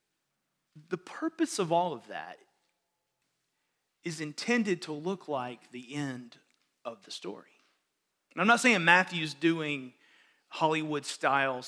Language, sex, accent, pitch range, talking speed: English, male, American, 155-210 Hz, 120 wpm